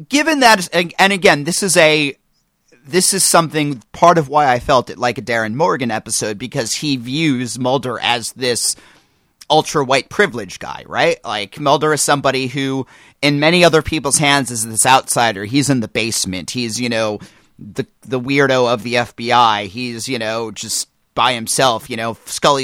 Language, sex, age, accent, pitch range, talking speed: English, male, 30-49, American, 120-150 Hz, 185 wpm